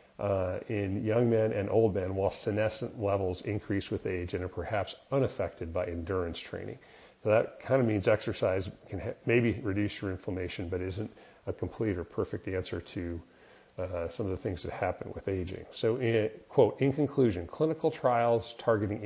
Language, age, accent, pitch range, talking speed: English, 40-59, American, 90-115 Hz, 180 wpm